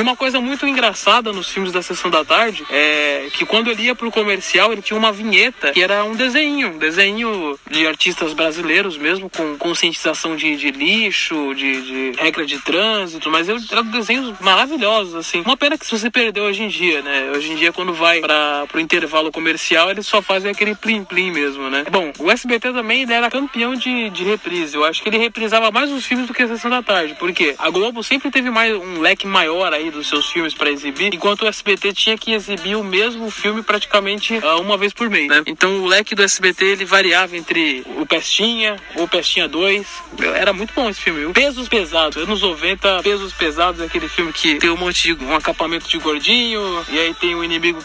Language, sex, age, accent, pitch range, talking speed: Portuguese, male, 20-39, Brazilian, 160-220 Hz, 210 wpm